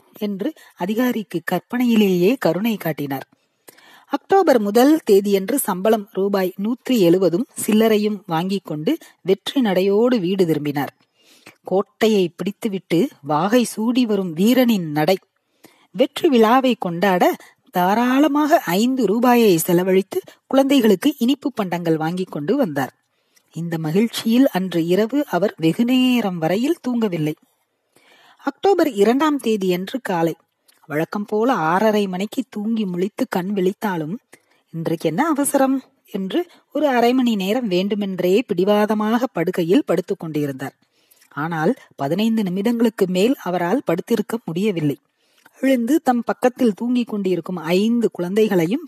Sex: female